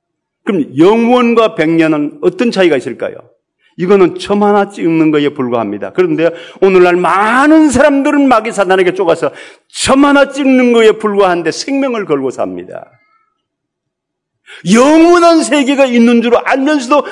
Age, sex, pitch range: 40-59, male, 170-255 Hz